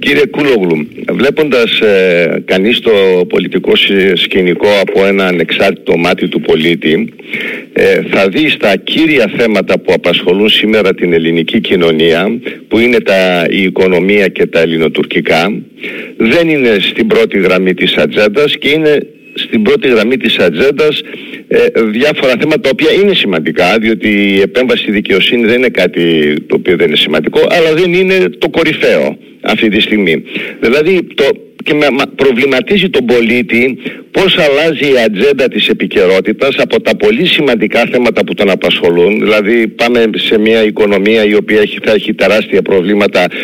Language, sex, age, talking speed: Greek, male, 50-69, 145 wpm